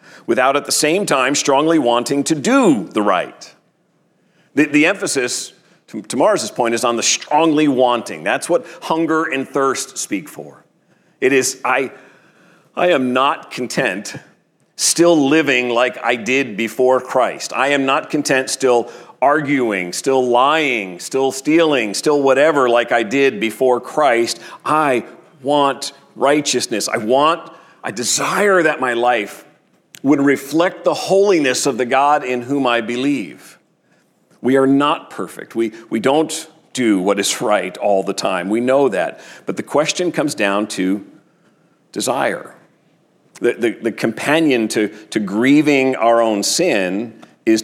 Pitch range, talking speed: 120-155 Hz, 145 wpm